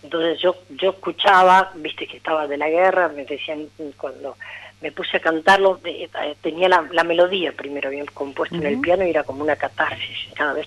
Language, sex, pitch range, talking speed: Spanish, female, 150-185 Hz, 190 wpm